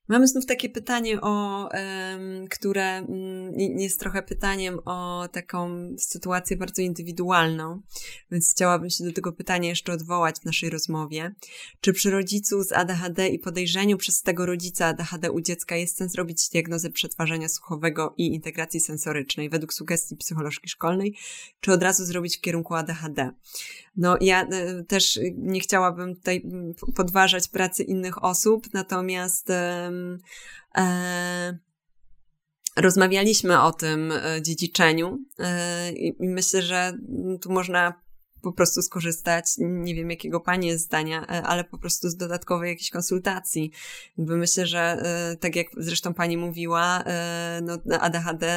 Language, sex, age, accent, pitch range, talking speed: Polish, female, 20-39, native, 170-185 Hz, 130 wpm